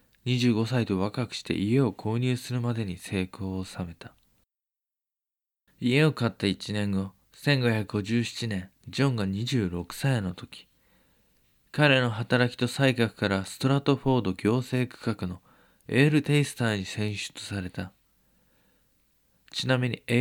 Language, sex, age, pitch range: Japanese, male, 20-39, 100-130 Hz